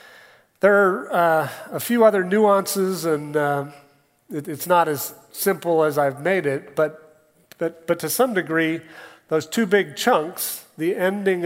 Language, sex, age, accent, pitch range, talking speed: English, male, 40-59, American, 140-180 Hz, 155 wpm